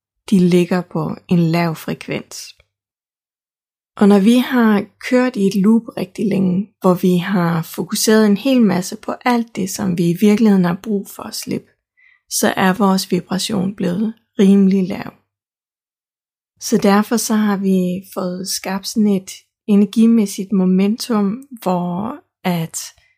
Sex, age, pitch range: female, 20-39, 185-220 Hz